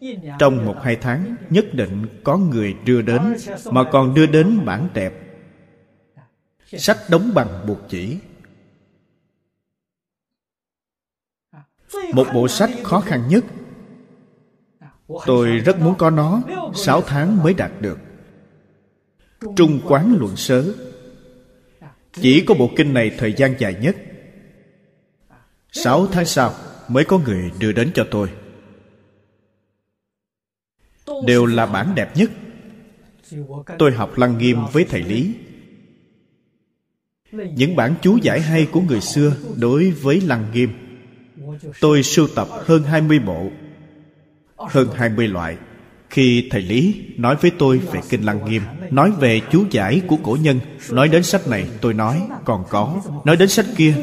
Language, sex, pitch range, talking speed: Vietnamese, male, 120-185 Hz, 135 wpm